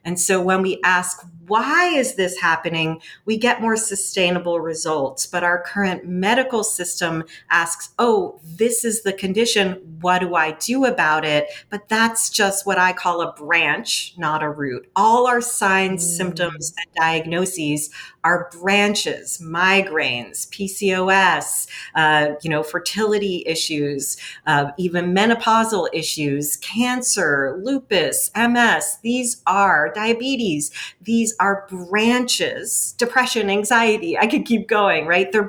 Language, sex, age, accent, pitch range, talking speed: English, female, 40-59, American, 170-220 Hz, 130 wpm